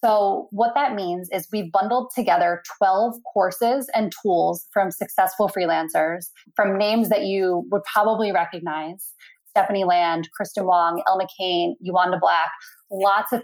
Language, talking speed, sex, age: English, 145 wpm, female, 20-39